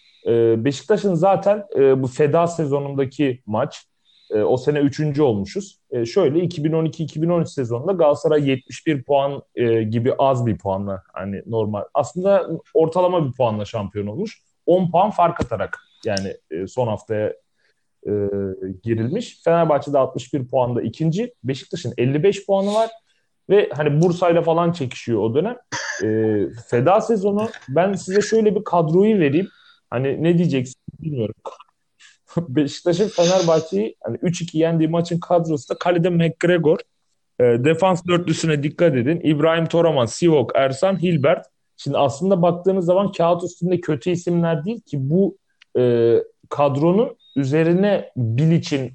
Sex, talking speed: male, 130 wpm